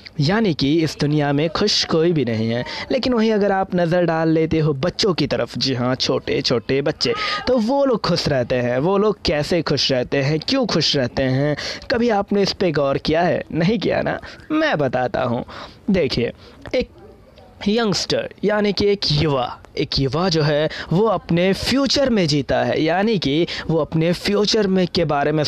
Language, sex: Hindi, male